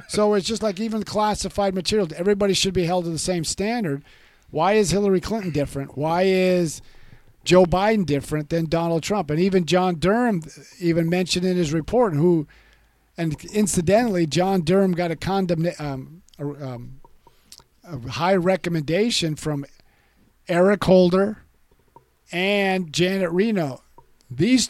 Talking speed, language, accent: 140 wpm, English, American